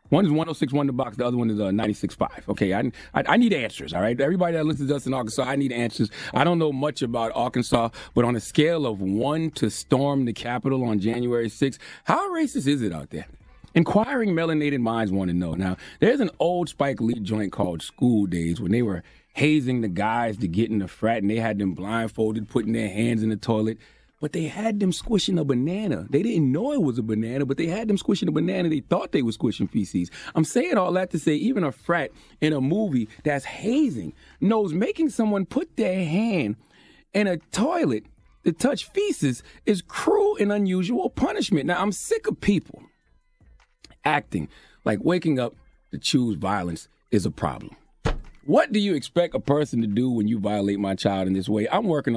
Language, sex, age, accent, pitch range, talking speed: English, male, 30-49, American, 110-175 Hz, 210 wpm